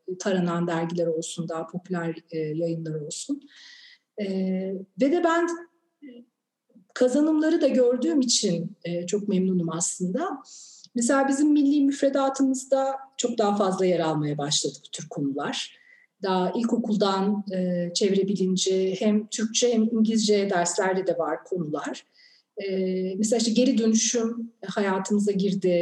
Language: Turkish